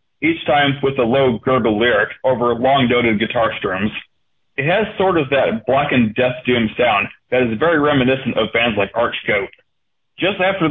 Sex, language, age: male, English, 40-59